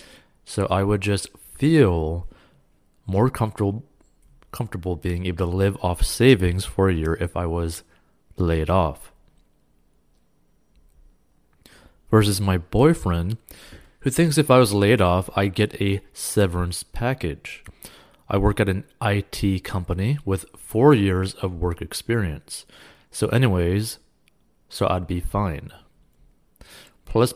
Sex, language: male, English